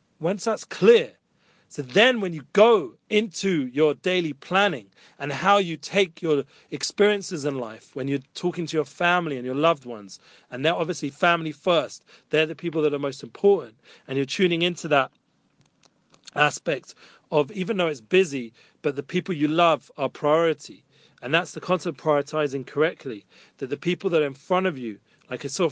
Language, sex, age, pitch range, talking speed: English, male, 40-59, 145-175 Hz, 185 wpm